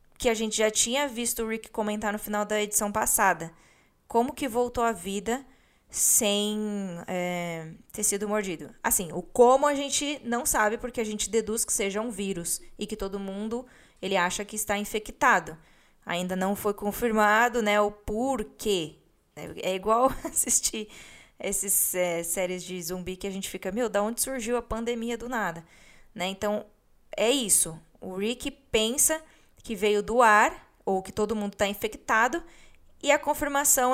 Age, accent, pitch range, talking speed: 20-39, Brazilian, 200-240 Hz, 165 wpm